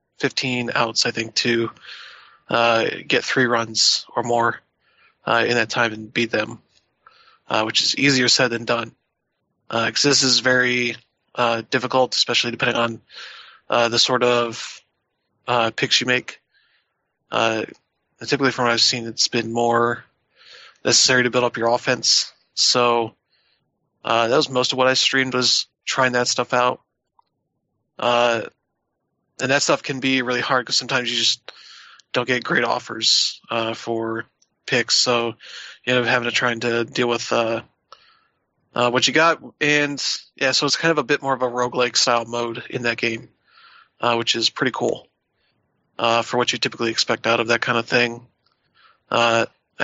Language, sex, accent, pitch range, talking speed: English, male, American, 115-130 Hz, 170 wpm